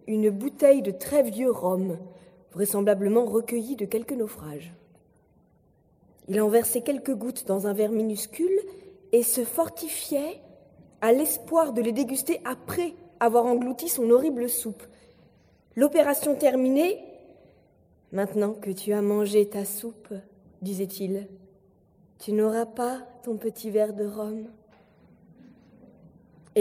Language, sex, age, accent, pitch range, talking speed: French, female, 20-39, French, 210-270 Hz, 125 wpm